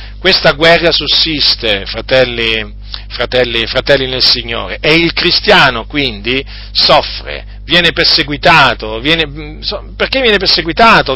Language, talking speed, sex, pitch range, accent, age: Italian, 100 wpm, male, 130-190 Hz, native, 40-59